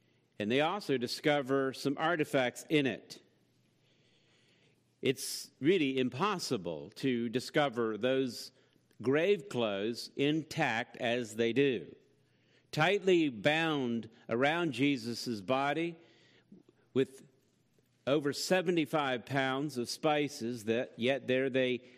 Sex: male